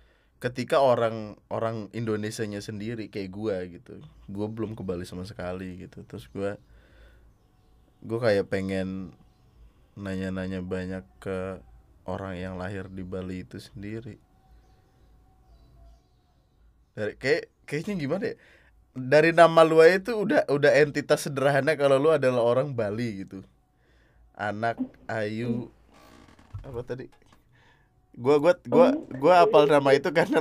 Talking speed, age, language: 120 wpm, 20-39, Indonesian